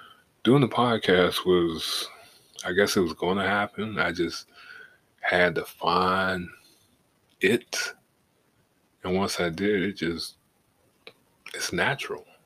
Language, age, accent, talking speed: English, 20-39, American, 120 wpm